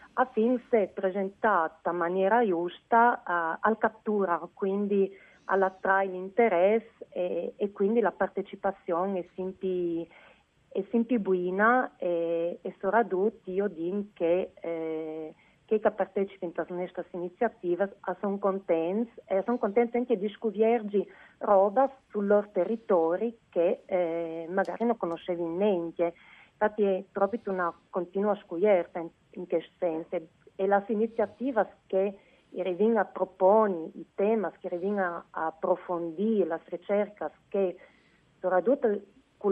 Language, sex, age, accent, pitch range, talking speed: Italian, female, 40-59, native, 175-210 Hz, 120 wpm